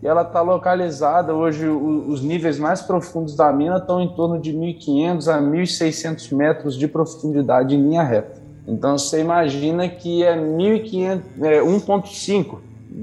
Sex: male